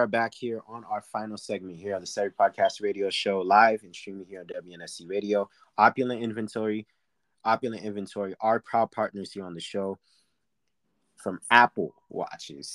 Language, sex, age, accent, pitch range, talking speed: English, male, 20-39, American, 90-110 Hz, 165 wpm